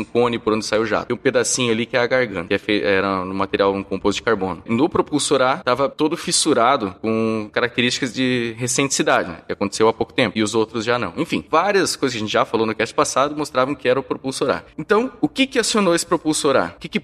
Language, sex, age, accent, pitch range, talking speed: Portuguese, male, 20-39, Brazilian, 110-150 Hz, 255 wpm